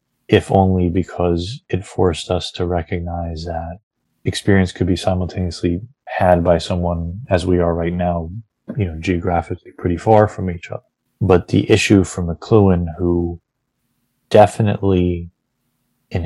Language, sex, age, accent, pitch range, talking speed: English, male, 30-49, American, 85-100 Hz, 135 wpm